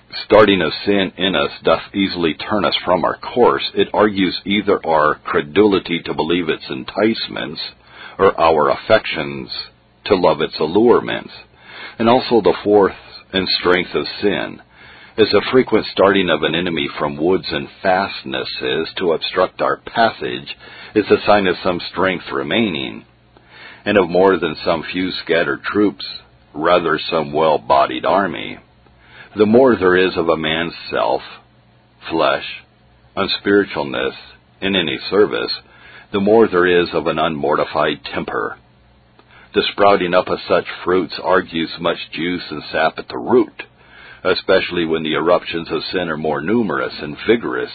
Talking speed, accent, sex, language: 145 wpm, American, male, English